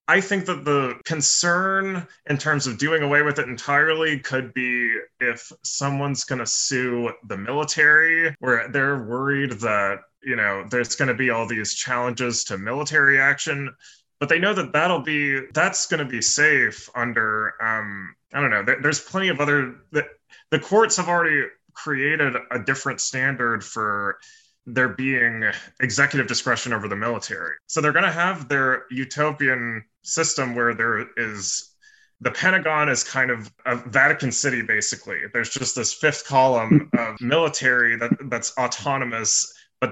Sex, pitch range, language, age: male, 120-150 Hz, English, 20-39